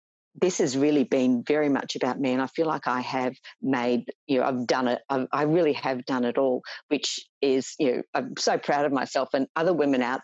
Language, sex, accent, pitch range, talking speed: English, female, Australian, 130-145 Hz, 235 wpm